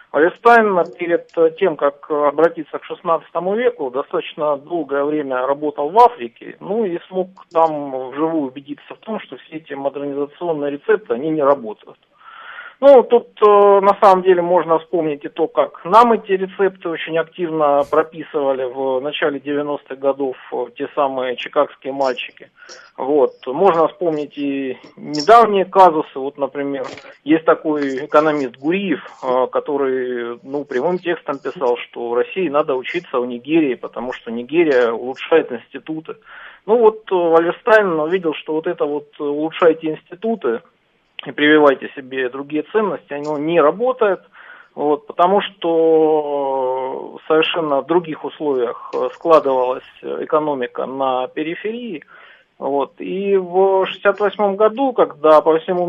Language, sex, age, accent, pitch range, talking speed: Russian, male, 50-69, native, 140-205 Hz, 130 wpm